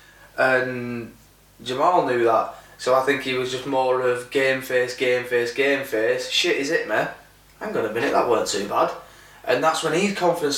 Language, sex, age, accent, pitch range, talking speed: English, male, 20-39, British, 120-140 Hz, 200 wpm